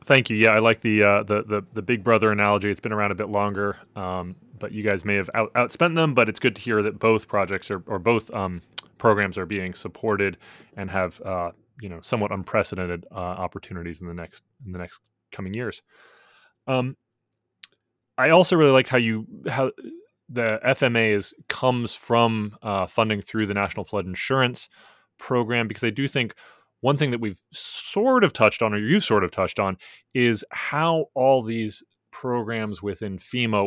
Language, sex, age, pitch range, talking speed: English, male, 20-39, 95-115 Hz, 190 wpm